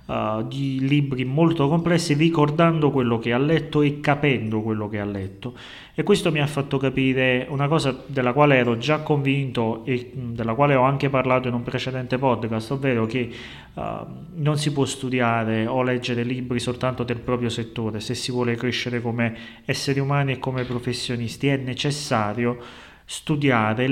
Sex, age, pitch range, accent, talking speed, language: male, 30-49, 115-135 Hz, native, 160 wpm, Italian